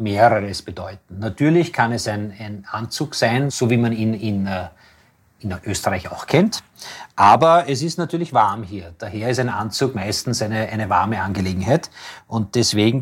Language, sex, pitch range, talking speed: German, male, 105-135 Hz, 165 wpm